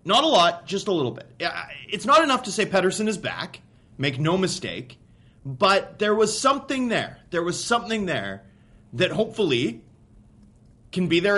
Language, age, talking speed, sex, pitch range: English, 30-49, 170 wpm, male, 125-190 Hz